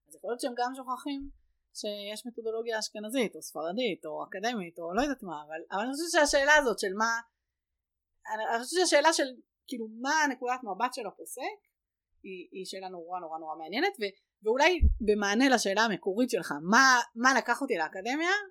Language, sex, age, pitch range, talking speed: Hebrew, female, 30-49, 185-275 Hz, 170 wpm